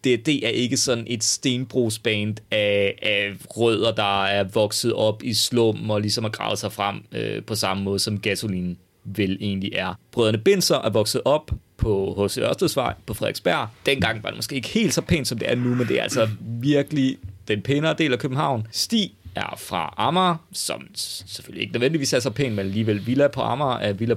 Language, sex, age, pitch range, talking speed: Danish, male, 30-49, 105-135 Hz, 200 wpm